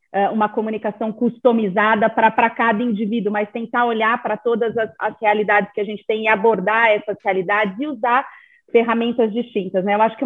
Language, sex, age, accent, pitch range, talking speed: Portuguese, female, 30-49, Brazilian, 215-260 Hz, 175 wpm